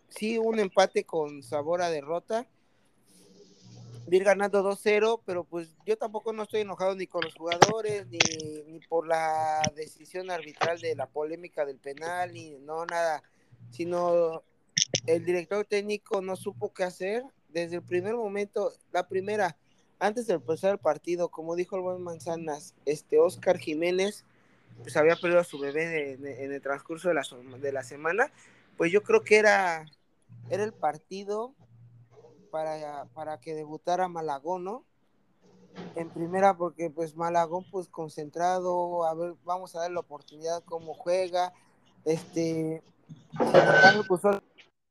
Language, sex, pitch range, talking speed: Spanish, male, 155-185 Hz, 150 wpm